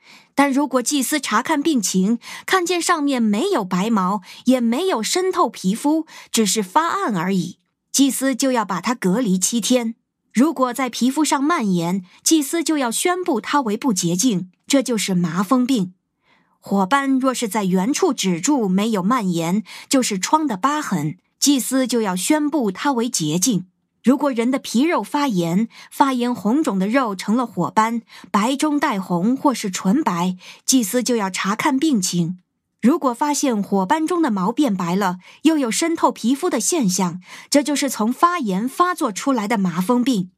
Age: 20-39